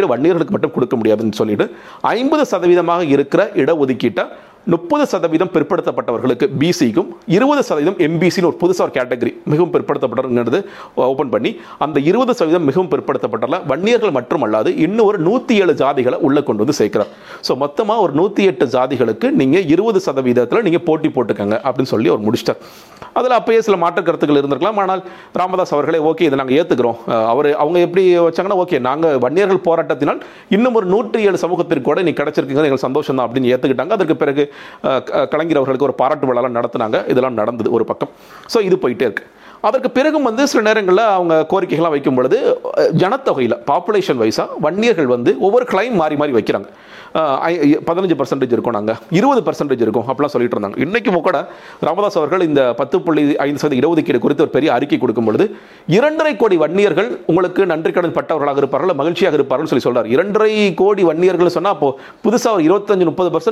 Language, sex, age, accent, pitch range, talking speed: Tamil, male, 40-59, native, 150-215 Hz, 145 wpm